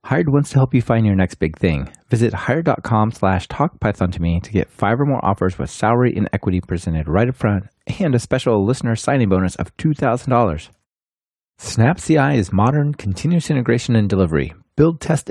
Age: 30-49